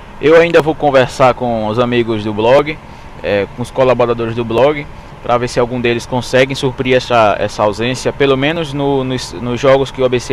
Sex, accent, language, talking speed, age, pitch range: male, Brazilian, Portuguese, 200 wpm, 20-39, 120-145 Hz